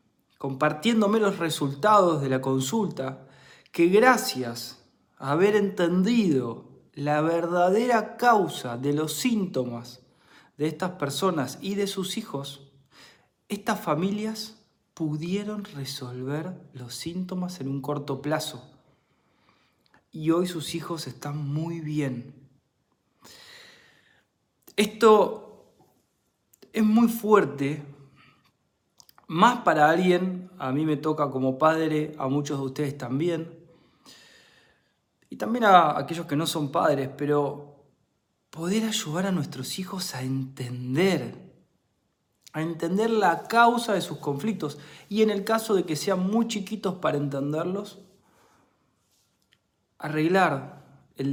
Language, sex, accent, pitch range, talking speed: Spanish, male, Argentinian, 140-195 Hz, 110 wpm